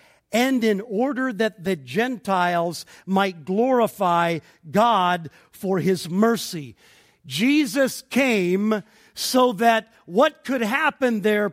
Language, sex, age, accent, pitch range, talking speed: English, male, 50-69, American, 195-260 Hz, 105 wpm